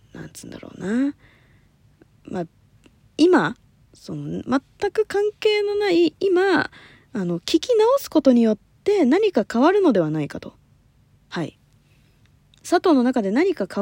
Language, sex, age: Japanese, female, 20-39